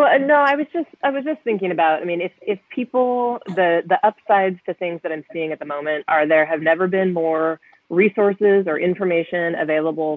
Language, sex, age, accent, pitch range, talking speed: English, female, 30-49, American, 155-190 Hz, 210 wpm